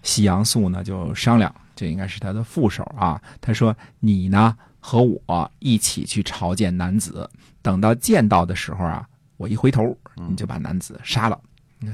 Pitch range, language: 95-120 Hz, Chinese